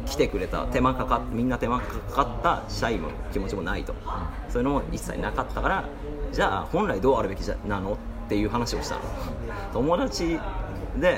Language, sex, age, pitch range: Japanese, male, 30-49, 100-135 Hz